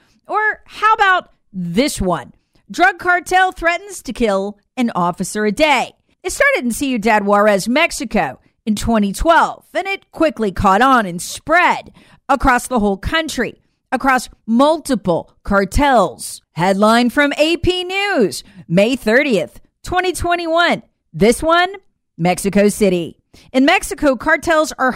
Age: 40-59